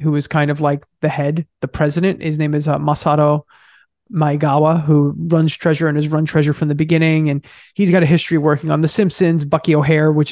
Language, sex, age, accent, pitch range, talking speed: English, male, 20-39, American, 150-180 Hz, 215 wpm